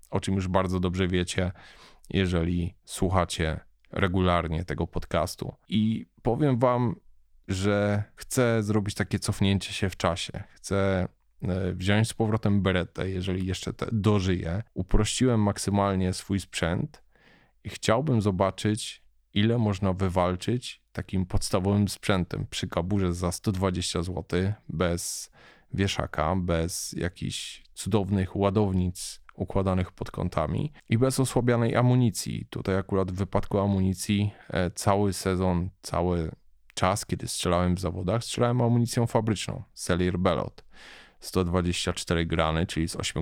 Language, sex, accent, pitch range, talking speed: Polish, male, native, 90-110 Hz, 120 wpm